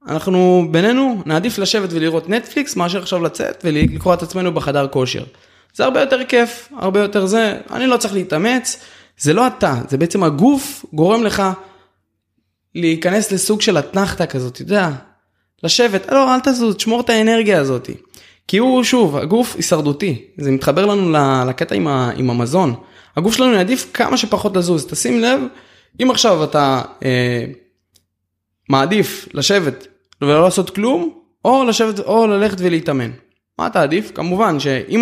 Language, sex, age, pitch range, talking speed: Hebrew, male, 20-39, 150-230 Hz, 145 wpm